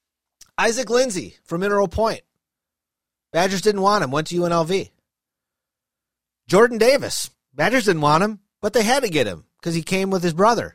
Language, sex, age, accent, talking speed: English, male, 30-49, American, 165 wpm